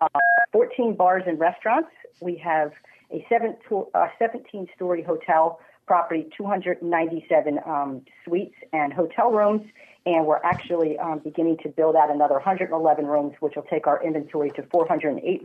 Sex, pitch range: female, 150-180 Hz